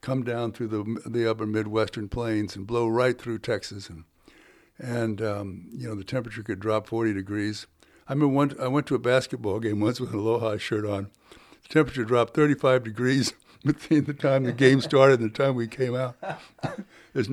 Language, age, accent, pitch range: English, 60-79, American, 105-125 Hz